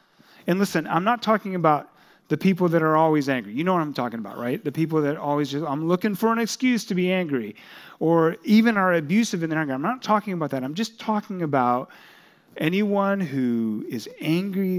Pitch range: 130-180 Hz